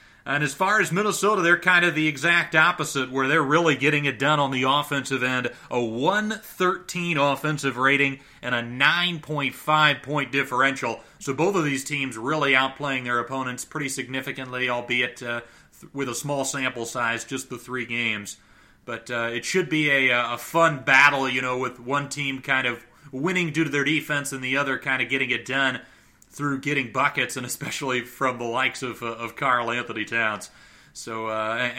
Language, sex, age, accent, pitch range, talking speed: English, male, 30-49, American, 120-150 Hz, 185 wpm